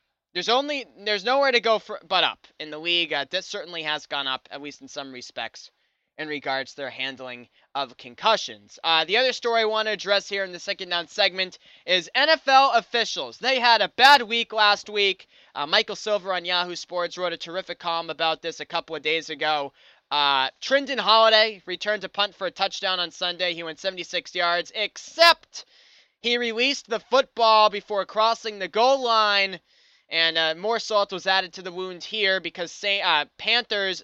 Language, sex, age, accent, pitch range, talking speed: English, male, 20-39, American, 165-210 Hz, 190 wpm